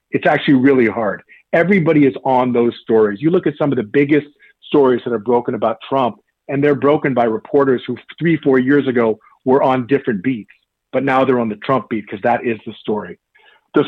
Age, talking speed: 40-59, 210 wpm